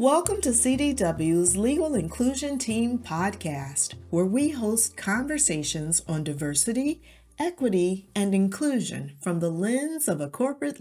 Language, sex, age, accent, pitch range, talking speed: English, female, 40-59, American, 155-240 Hz, 120 wpm